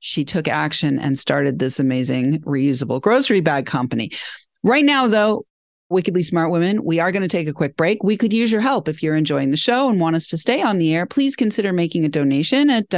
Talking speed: 225 wpm